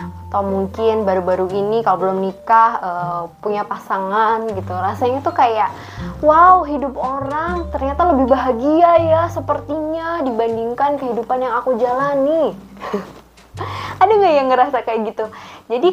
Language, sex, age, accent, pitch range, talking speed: Indonesian, female, 20-39, native, 200-270 Hz, 130 wpm